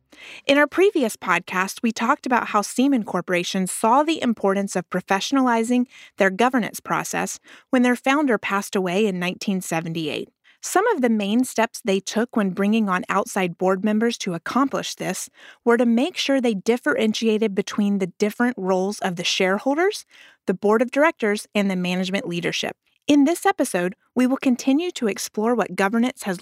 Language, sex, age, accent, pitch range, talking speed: English, female, 30-49, American, 195-260 Hz, 165 wpm